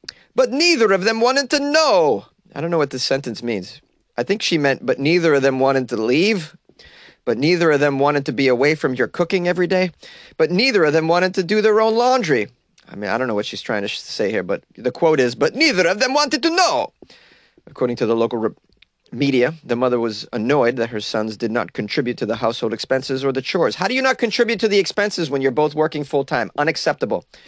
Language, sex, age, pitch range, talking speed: English, male, 30-49, 130-185 Hz, 230 wpm